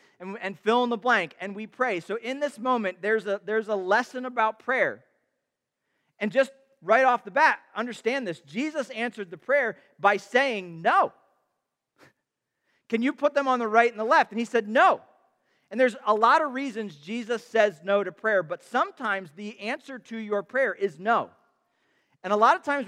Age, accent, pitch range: 40-59, American, 205-265 Hz